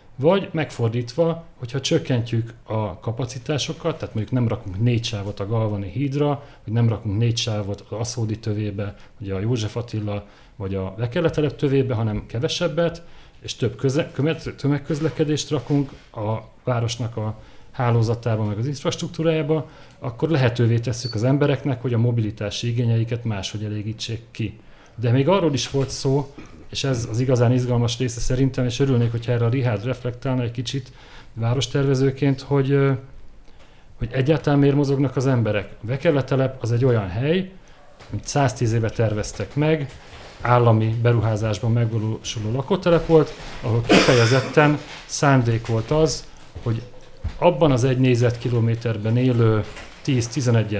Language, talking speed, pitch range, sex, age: Hungarian, 135 wpm, 110-140 Hz, male, 40-59